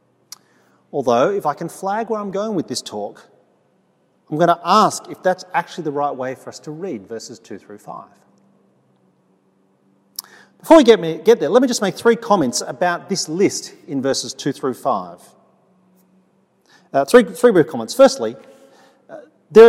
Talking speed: 170 wpm